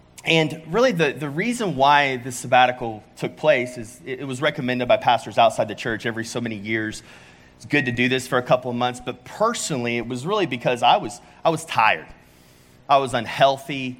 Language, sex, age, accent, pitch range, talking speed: English, male, 30-49, American, 115-135 Hz, 205 wpm